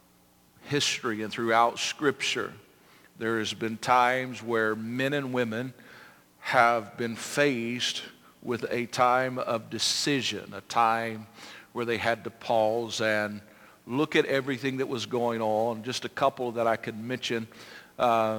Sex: male